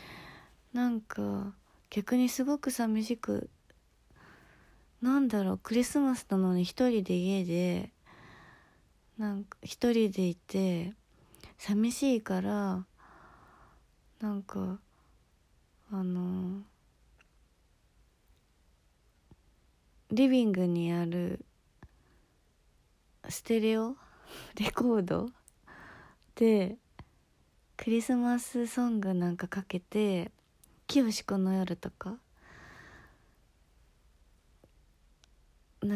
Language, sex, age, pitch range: Japanese, female, 20-39, 175-230 Hz